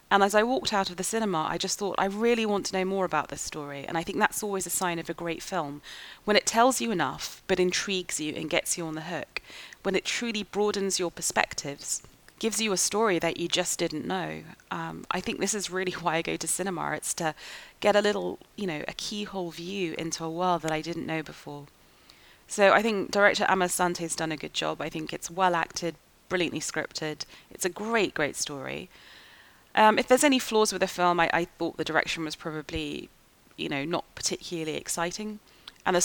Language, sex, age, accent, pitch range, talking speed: English, female, 30-49, British, 160-195 Hz, 220 wpm